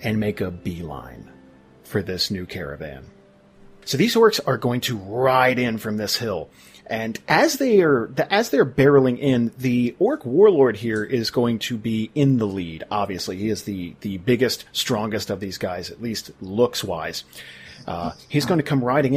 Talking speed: 175 wpm